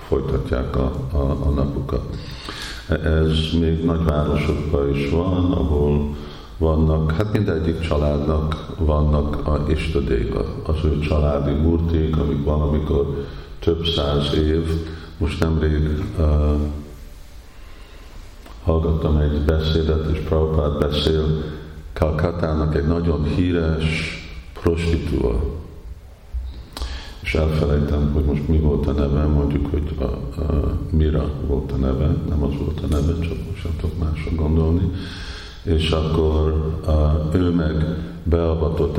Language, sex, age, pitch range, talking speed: Hungarian, male, 50-69, 75-85 Hz, 110 wpm